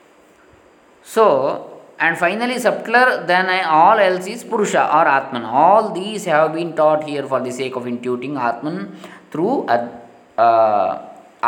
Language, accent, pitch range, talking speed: Kannada, native, 125-155 Hz, 140 wpm